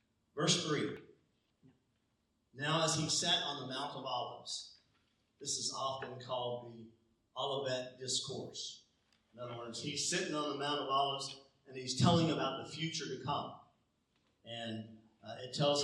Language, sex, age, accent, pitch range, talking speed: English, male, 40-59, American, 120-155 Hz, 150 wpm